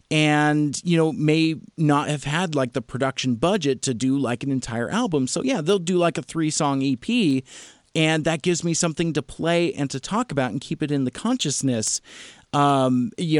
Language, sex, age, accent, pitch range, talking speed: English, male, 40-59, American, 130-165 Hz, 200 wpm